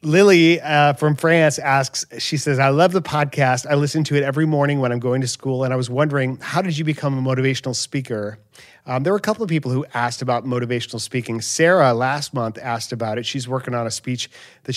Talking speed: 230 wpm